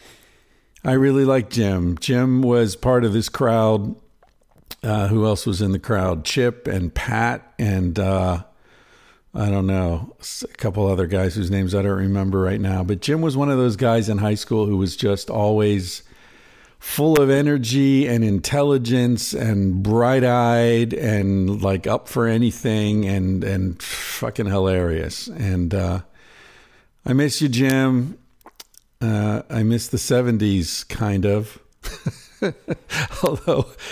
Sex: male